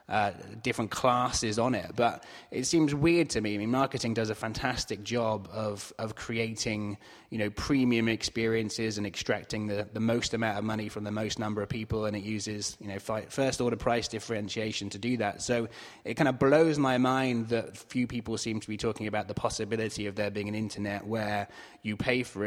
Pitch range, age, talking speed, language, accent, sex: 105-120 Hz, 20-39, 205 wpm, English, British, male